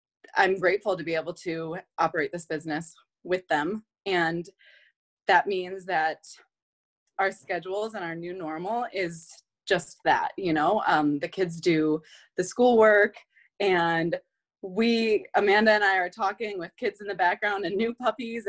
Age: 20-39